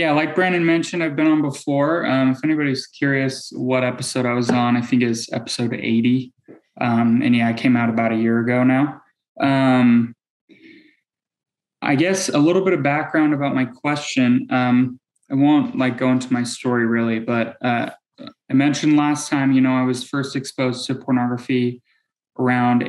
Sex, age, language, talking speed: male, 20-39, English, 180 wpm